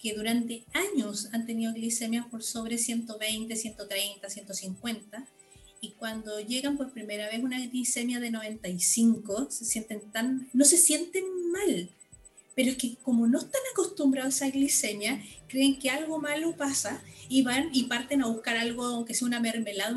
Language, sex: Spanish, female